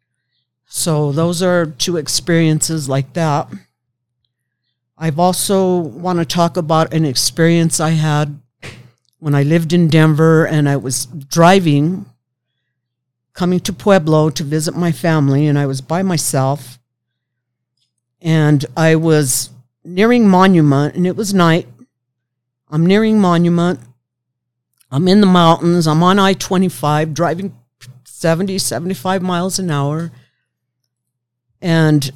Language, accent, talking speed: English, American, 120 wpm